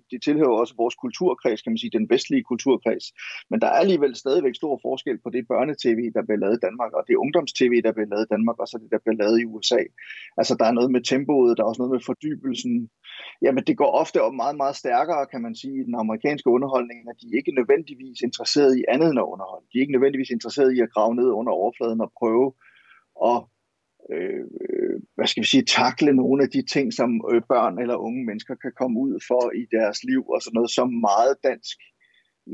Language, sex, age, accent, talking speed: Danish, male, 30-49, native, 230 wpm